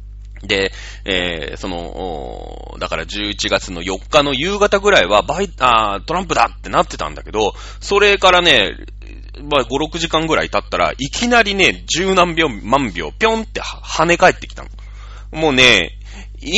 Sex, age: male, 30-49